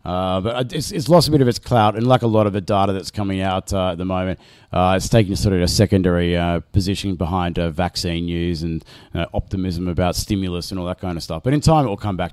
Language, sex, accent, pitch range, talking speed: English, male, Australian, 95-115 Hz, 275 wpm